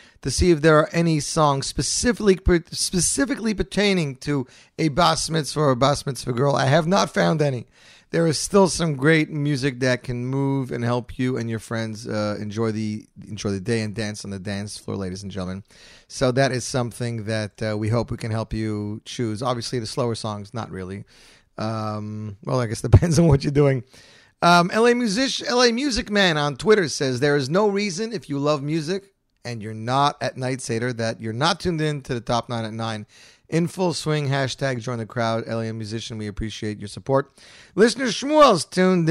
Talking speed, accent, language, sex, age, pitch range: 205 wpm, American, English, male, 40-59, 115-155 Hz